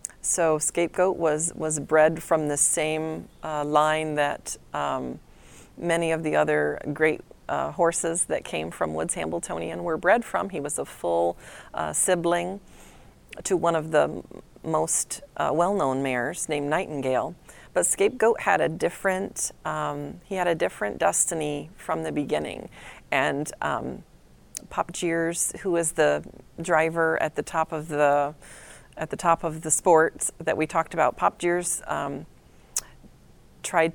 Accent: American